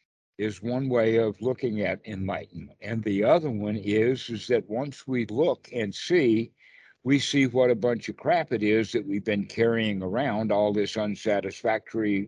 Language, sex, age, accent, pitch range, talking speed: English, male, 60-79, American, 110-130 Hz, 175 wpm